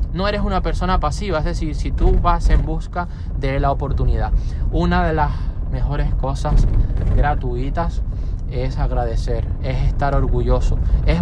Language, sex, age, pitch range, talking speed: Spanish, male, 20-39, 115-170 Hz, 145 wpm